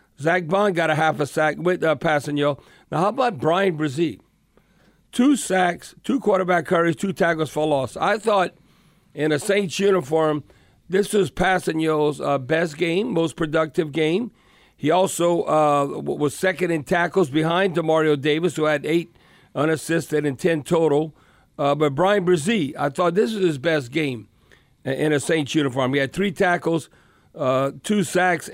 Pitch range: 150-175 Hz